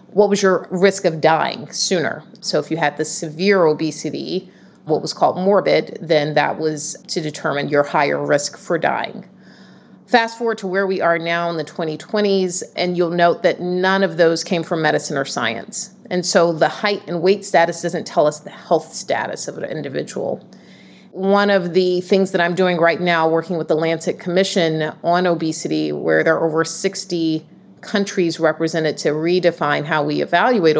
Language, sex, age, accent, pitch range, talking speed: English, female, 30-49, American, 155-185 Hz, 185 wpm